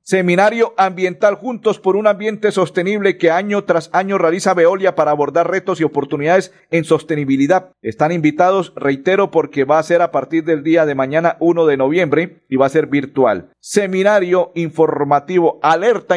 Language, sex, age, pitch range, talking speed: Spanish, male, 50-69, 135-185 Hz, 165 wpm